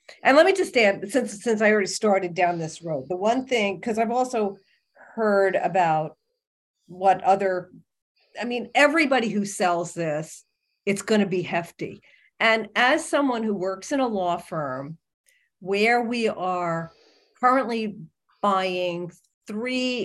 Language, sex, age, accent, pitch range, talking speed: English, female, 50-69, American, 180-230 Hz, 145 wpm